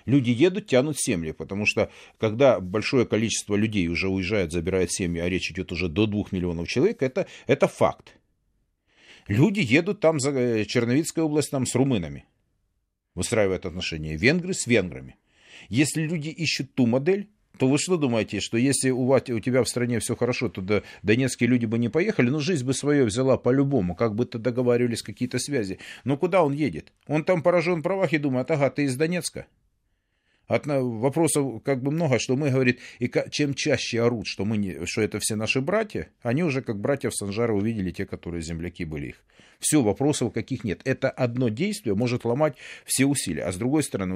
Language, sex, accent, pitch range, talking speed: Russian, male, native, 100-140 Hz, 180 wpm